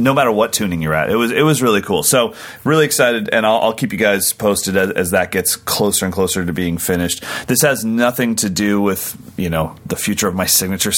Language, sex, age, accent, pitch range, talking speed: English, male, 30-49, American, 90-115 Hz, 245 wpm